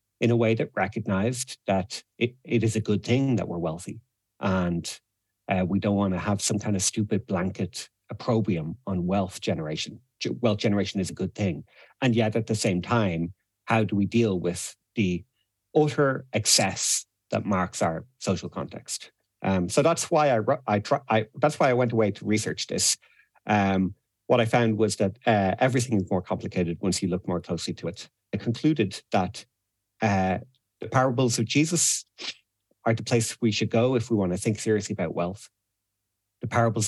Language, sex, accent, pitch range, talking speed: English, male, Irish, 95-115 Hz, 175 wpm